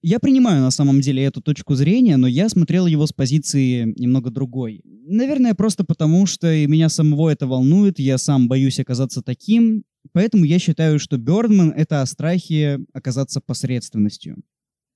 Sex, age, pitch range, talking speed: male, 20-39, 135-180 Hz, 155 wpm